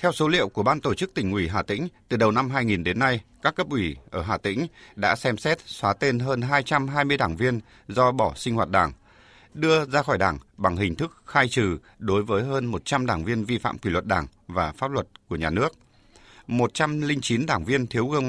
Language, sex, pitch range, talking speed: Vietnamese, male, 105-135 Hz, 225 wpm